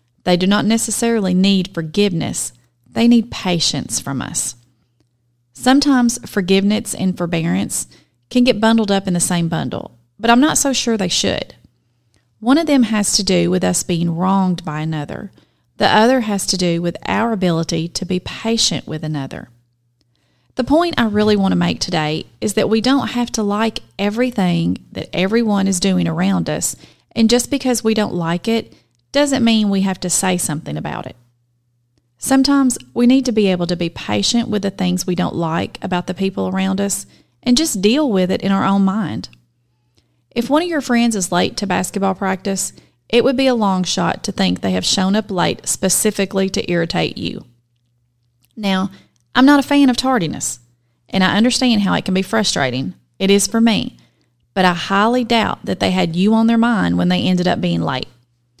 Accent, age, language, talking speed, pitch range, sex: American, 30-49, English, 190 wpm, 155-225 Hz, female